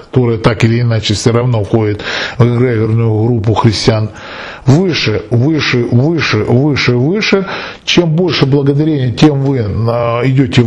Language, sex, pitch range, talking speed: Russian, male, 120-155 Hz, 125 wpm